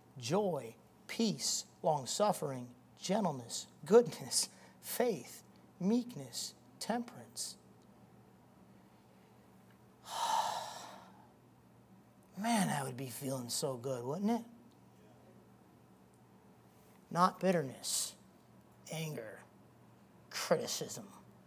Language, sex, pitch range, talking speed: English, male, 130-170 Hz, 60 wpm